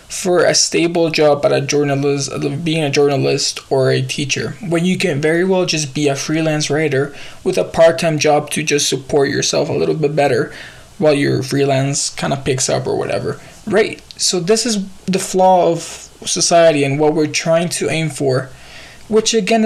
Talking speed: 185 wpm